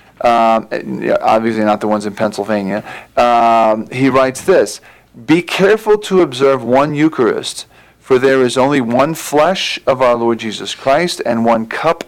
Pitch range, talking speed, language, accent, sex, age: 110-130 Hz, 155 wpm, English, American, male, 40-59